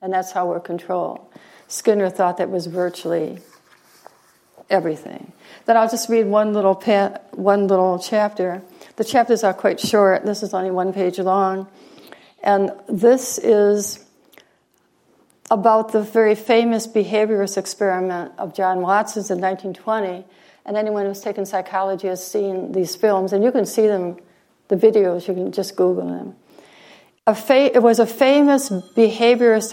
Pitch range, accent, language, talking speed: 190-225 Hz, American, English, 140 wpm